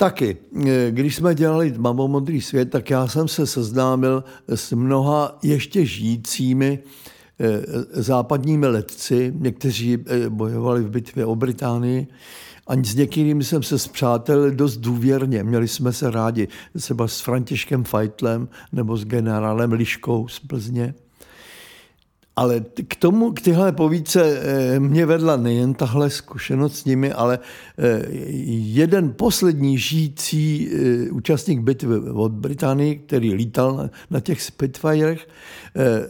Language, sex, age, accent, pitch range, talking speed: Czech, male, 60-79, native, 120-150 Hz, 120 wpm